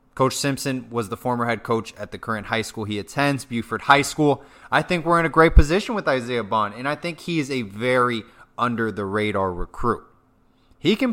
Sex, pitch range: male, 110-150 Hz